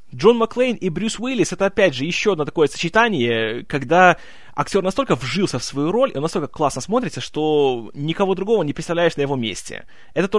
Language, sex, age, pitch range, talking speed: Russian, male, 20-39, 145-205 Hz, 200 wpm